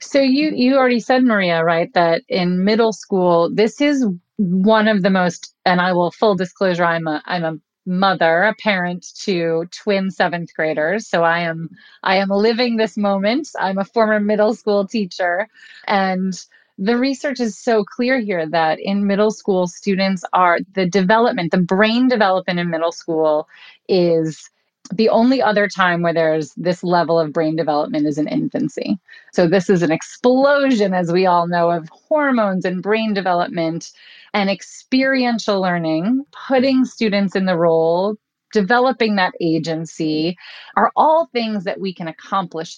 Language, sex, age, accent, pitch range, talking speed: English, female, 30-49, American, 170-220 Hz, 160 wpm